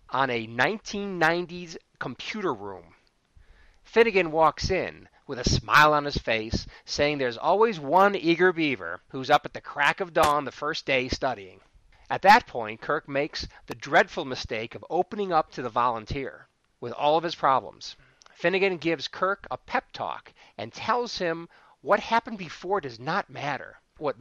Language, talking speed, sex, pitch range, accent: English, 165 wpm, male, 130-195 Hz, American